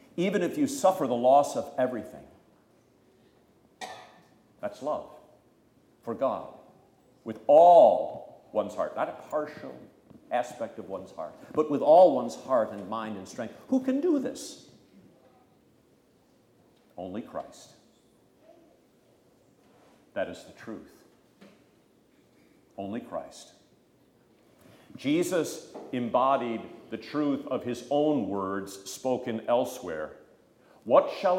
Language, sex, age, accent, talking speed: English, male, 50-69, American, 105 wpm